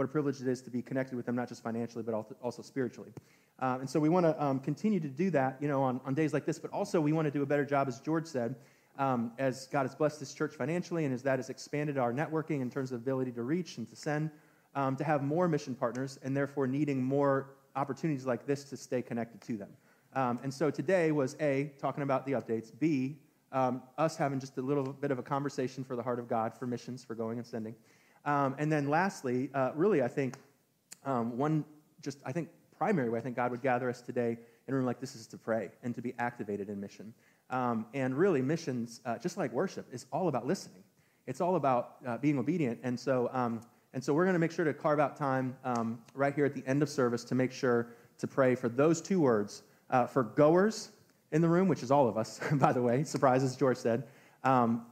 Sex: male